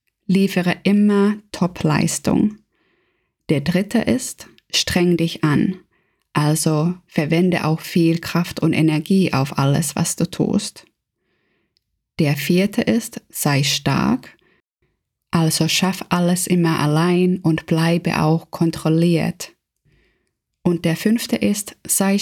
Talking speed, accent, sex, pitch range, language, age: 110 wpm, German, female, 165-195 Hz, German, 20-39